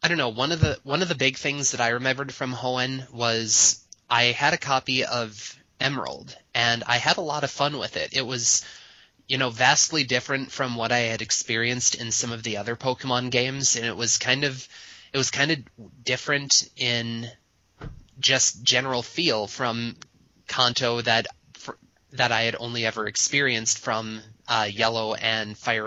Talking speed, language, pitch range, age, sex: 185 wpm, English, 110-130 Hz, 20-39, male